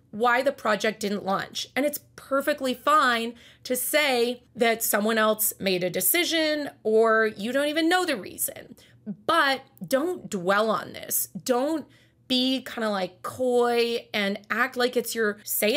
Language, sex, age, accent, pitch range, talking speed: English, female, 30-49, American, 205-270 Hz, 155 wpm